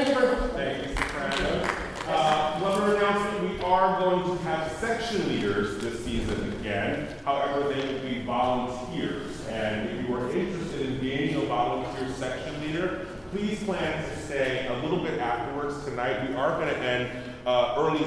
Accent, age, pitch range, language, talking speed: American, 30-49, 115-165 Hz, English, 150 wpm